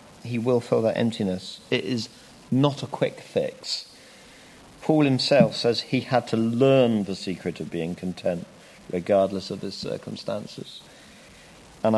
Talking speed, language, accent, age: 140 wpm, English, British, 40-59